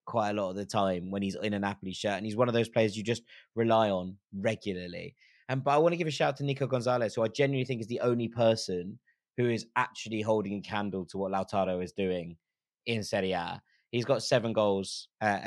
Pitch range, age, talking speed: 100-120 Hz, 20-39, 240 wpm